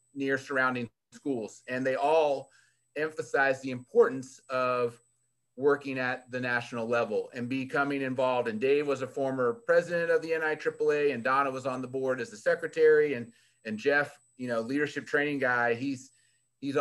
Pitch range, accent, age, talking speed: 125-150 Hz, American, 30-49, 165 wpm